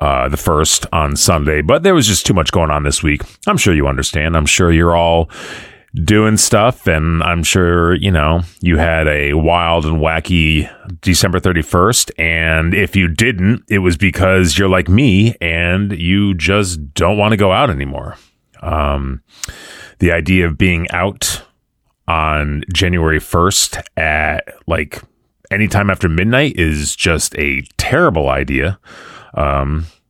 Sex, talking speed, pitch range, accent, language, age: male, 155 wpm, 80-100 Hz, American, English, 30-49